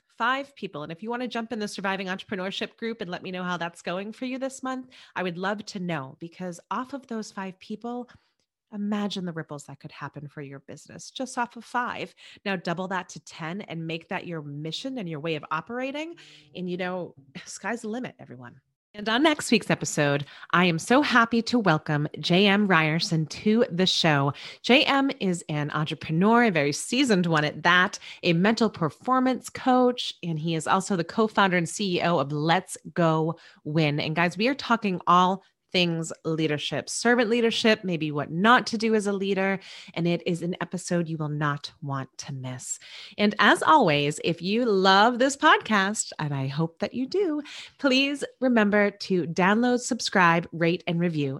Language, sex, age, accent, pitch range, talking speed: English, female, 30-49, American, 160-230 Hz, 190 wpm